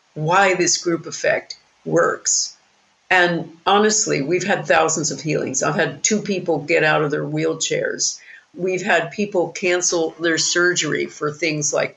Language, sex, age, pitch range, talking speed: English, female, 50-69, 160-205 Hz, 150 wpm